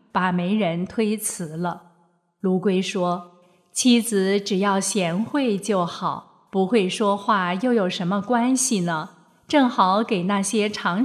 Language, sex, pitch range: Chinese, female, 185-230 Hz